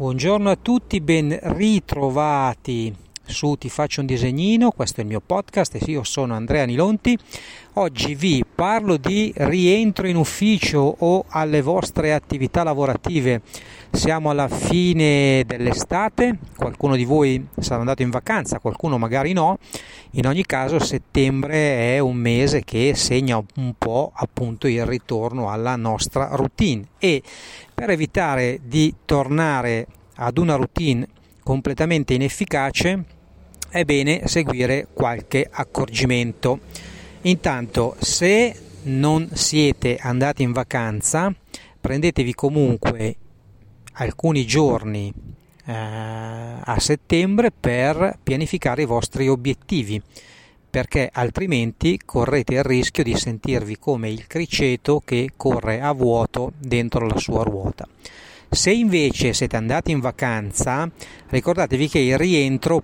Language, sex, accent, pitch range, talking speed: Italian, male, native, 120-160 Hz, 120 wpm